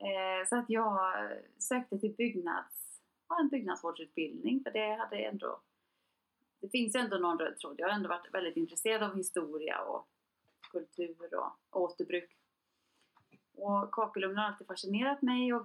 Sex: female